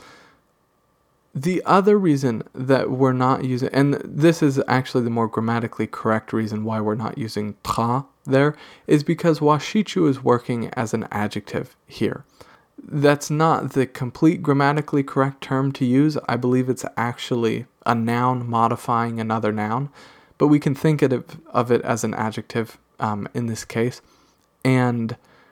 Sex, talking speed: male, 150 wpm